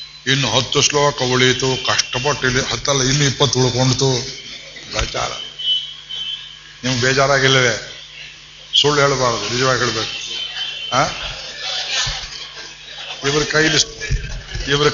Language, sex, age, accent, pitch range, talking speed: Kannada, male, 60-79, native, 130-160 Hz, 85 wpm